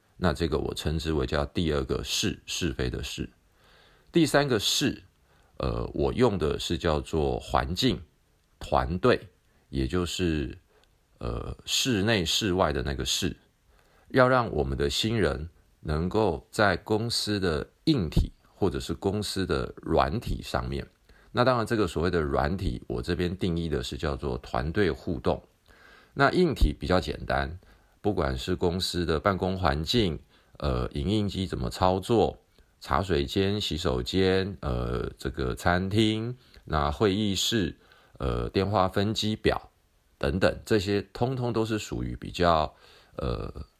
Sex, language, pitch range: male, Chinese, 75-110 Hz